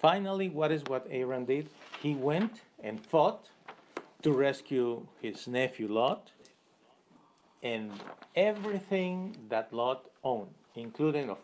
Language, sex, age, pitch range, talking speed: English, male, 40-59, 110-145 Hz, 115 wpm